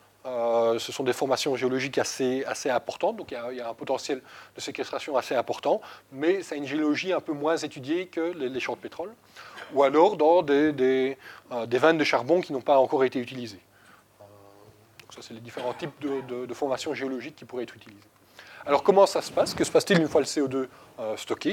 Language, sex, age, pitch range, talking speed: French, male, 20-39, 115-150 Hz, 225 wpm